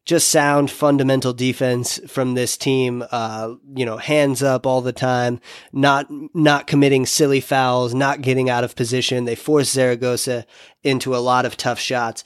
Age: 30-49